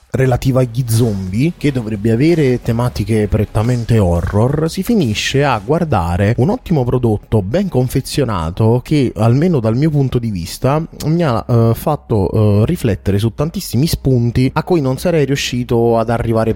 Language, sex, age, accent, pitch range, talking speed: Italian, male, 30-49, native, 105-135 Hz, 150 wpm